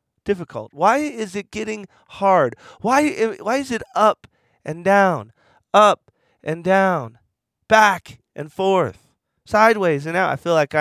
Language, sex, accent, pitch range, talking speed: English, male, American, 150-235 Hz, 140 wpm